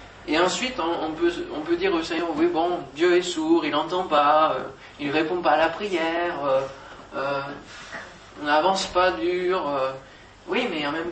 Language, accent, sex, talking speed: French, French, male, 190 wpm